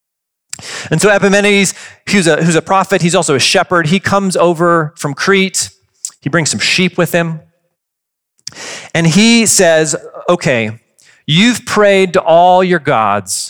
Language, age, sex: English, 40-59, male